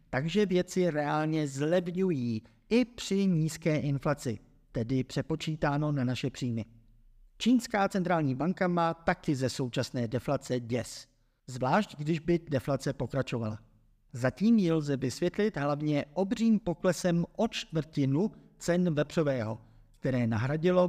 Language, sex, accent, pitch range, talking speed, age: Czech, male, native, 130-170 Hz, 115 wpm, 50-69